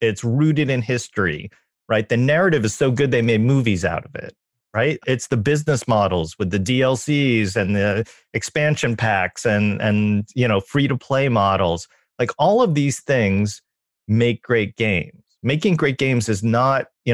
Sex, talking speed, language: male, 175 wpm, English